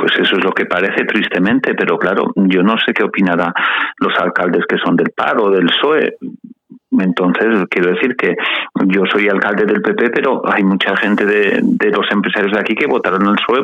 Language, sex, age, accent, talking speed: Spanish, male, 40-59, Spanish, 200 wpm